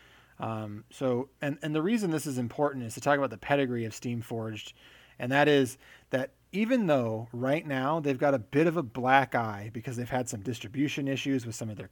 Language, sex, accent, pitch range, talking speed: English, male, American, 115-140 Hz, 215 wpm